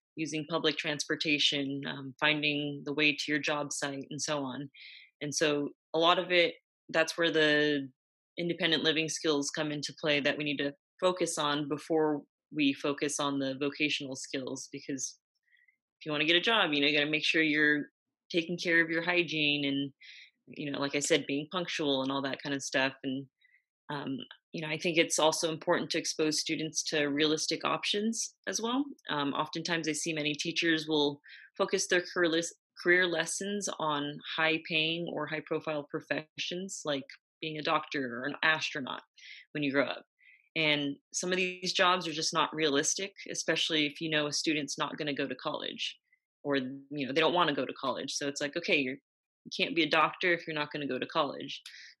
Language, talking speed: English, 195 wpm